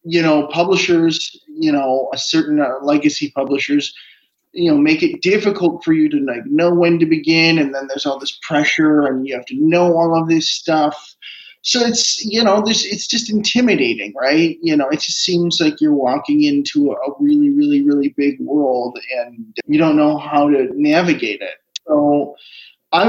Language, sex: English, male